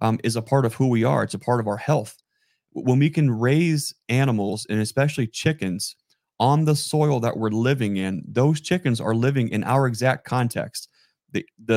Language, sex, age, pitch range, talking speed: English, male, 30-49, 110-130 Hz, 195 wpm